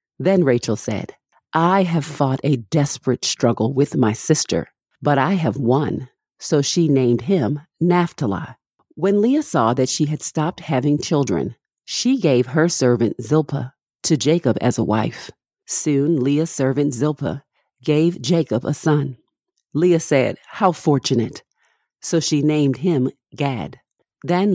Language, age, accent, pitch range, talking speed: English, 50-69, American, 130-165 Hz, 140 wpm